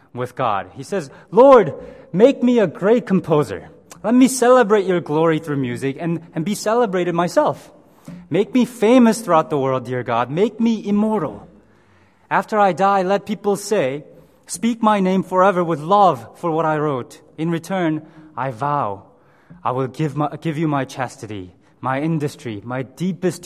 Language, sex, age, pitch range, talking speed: English, male, 20-39, 135-215 Hz, 165 wpm